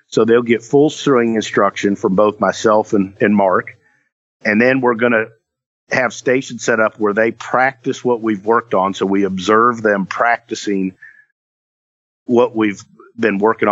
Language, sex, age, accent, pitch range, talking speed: English, male, 50-69, American, 100-115 Hz, 160 wpm